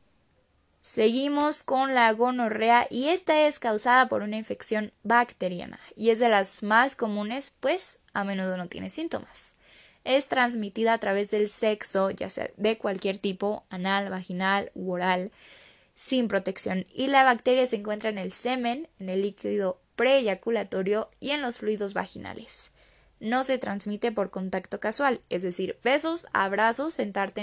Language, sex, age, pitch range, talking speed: Spanish, female, 10-29, 205-255 Hz, 150 wpm